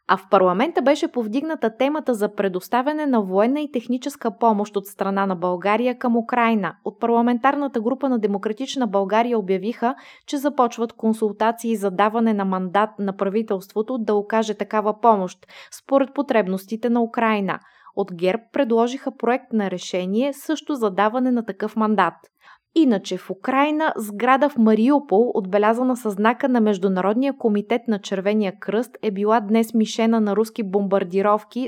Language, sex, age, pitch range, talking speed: Bulgarian, female, 20-39, 200-245 Hz, 145 wpm